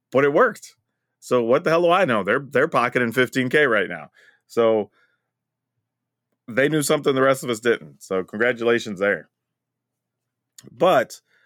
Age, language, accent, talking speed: 30-49, English, American, 150 wpm